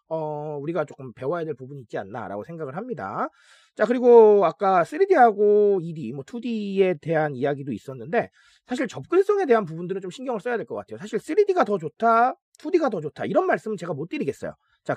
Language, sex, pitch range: Korean, male, 165-250 Hz